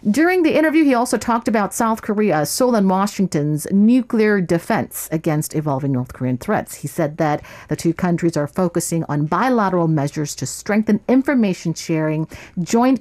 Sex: female